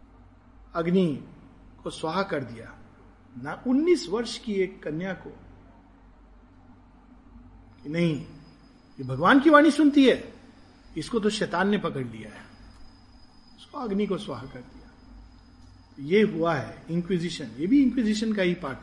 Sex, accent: male, native